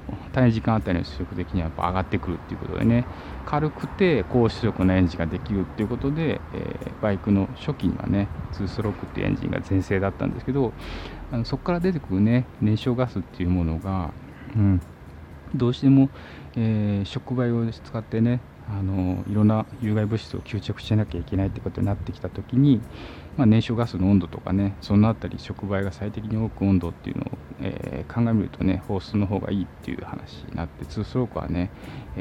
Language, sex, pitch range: Japanese, male, 90-115 Hz